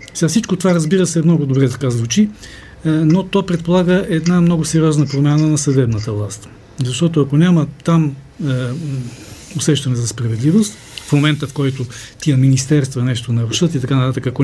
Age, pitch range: 40-59, 125-165 Hz